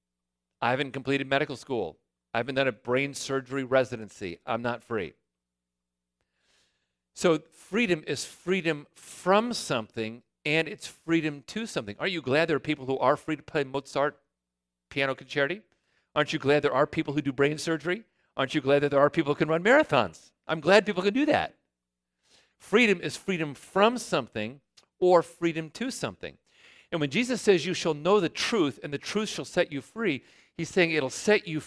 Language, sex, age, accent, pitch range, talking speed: English, male, 40-59, American, 130-180 Hz, 185 wpm